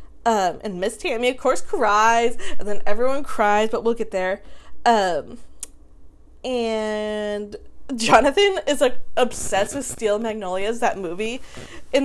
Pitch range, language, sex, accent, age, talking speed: 215-340 Hz, English, female, American, 20-39, 135 wpm